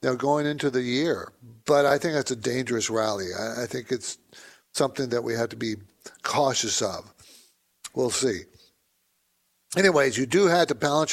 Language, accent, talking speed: English, American, 165 wpm